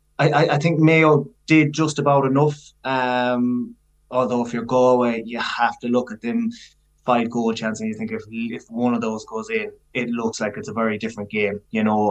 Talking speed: 210 wpm